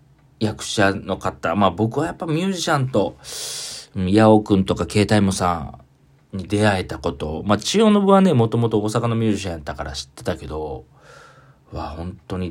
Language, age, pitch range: Japanese, 40-59, 85-130 Hz